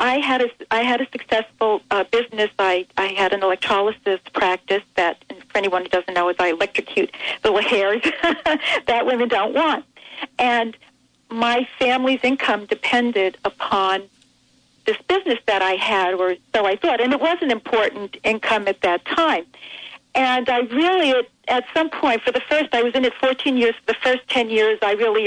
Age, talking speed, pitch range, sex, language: 50-69, 185 wpm, 210-280 Hz, female, English